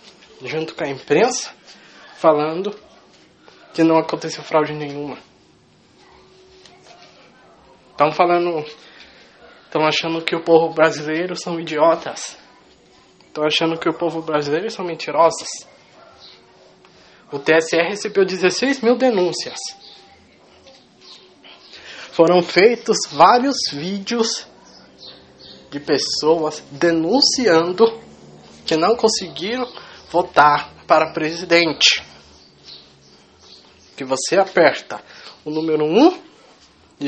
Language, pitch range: English, 150-185 Hz